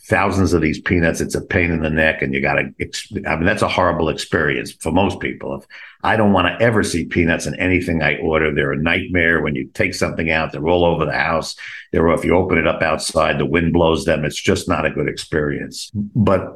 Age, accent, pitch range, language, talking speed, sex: 50-69, American, 85-110 Hz, English, 230 wpm, male